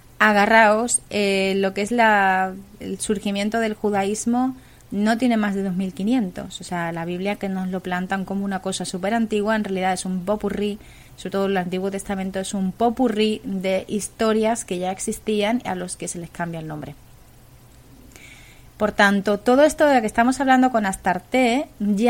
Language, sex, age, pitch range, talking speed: English, female, 20-39, 190-225 Hz, 180 wpm